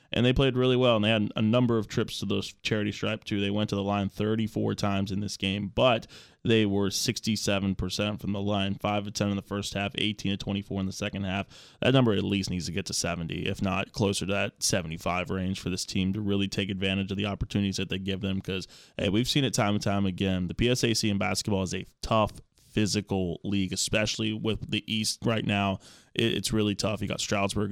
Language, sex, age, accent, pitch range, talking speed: English, male, 20-39, American, 95-110 Hz, 225 wpm